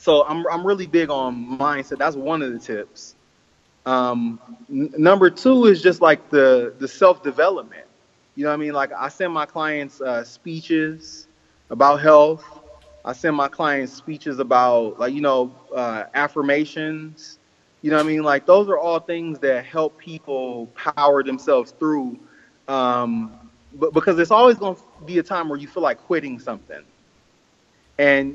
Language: English